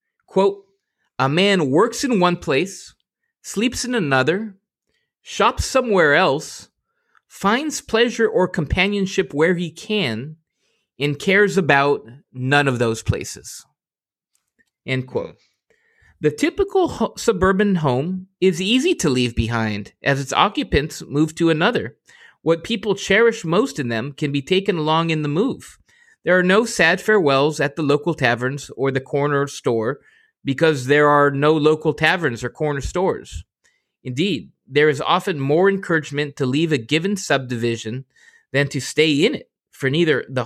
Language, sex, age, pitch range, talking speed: English, male, 30-49, 140-195 Hz, 145 wpm